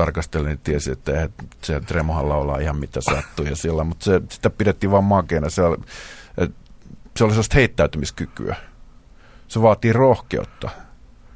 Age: 50-69